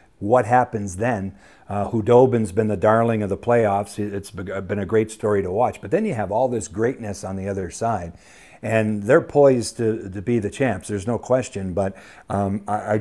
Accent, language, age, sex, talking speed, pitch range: American, English, 50-69, male, 205 wpm, 105-130 Hz